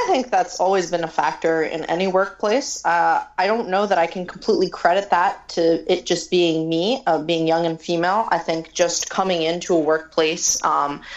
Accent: American